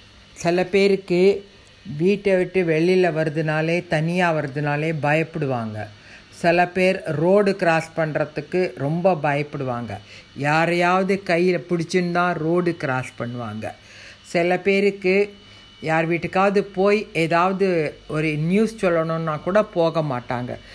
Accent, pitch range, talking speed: native, 150-185 Hz, 100 wpm